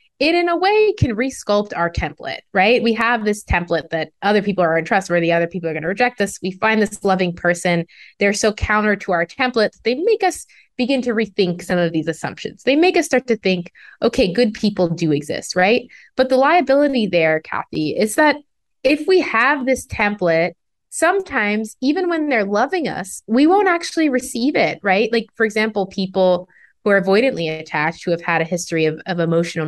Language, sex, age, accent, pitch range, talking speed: English, female, 20-39, American, 175-250 Hz, 205 wpm